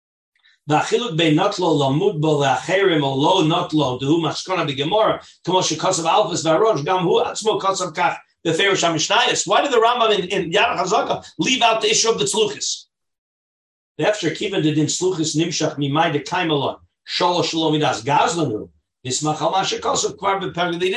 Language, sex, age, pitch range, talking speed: English, male, 50-69, 155-205 Hz, 55 wpm